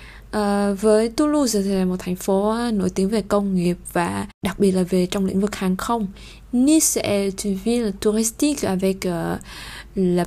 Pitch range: 195-240 Hz